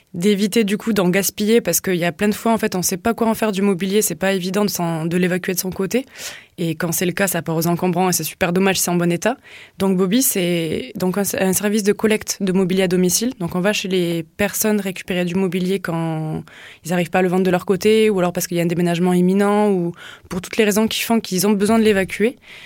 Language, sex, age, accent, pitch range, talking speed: French, female, 20-39, French, 175-205 Hz, 275 wpm